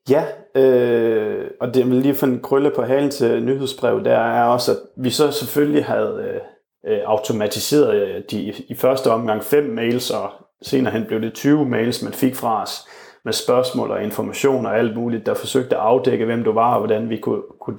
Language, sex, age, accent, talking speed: Danish, male, 30-49, native, 190 wpm